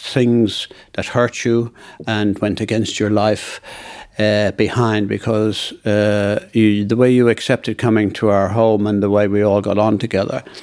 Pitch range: 110-130 Hz